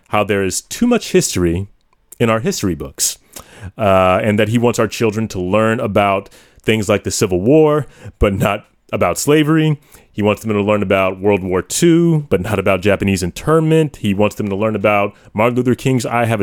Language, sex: English, male